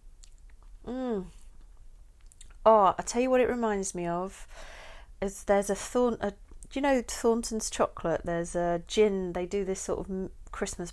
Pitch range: 165-215 Hz